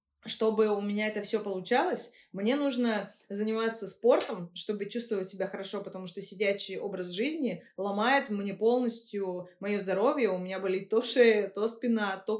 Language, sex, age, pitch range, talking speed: Russian, female, 20-39, 190-235 Hz, 155 wpm